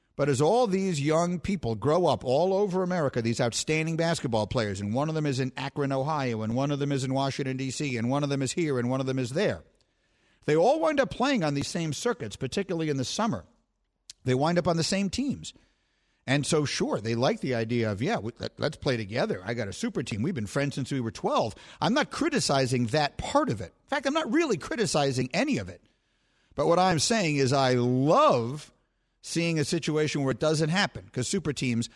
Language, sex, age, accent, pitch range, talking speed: English, male, 50-69, American, 125-170 Hz, 225 wpm